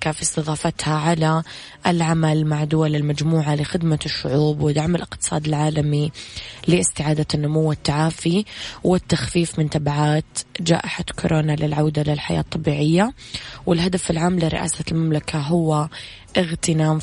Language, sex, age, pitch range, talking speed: English, female, 20-39, 150-165 Hz, 100 wpm